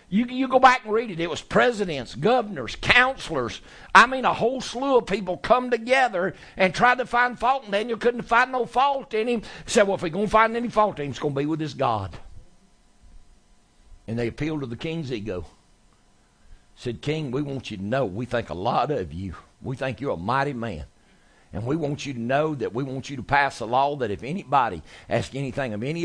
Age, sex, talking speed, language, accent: 60-79, male, 225 wpm, English, American